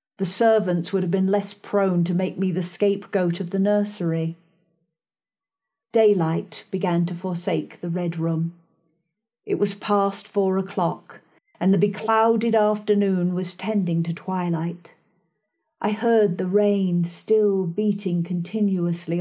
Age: 40-59